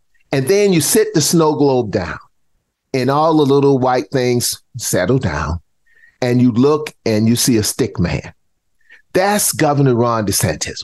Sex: male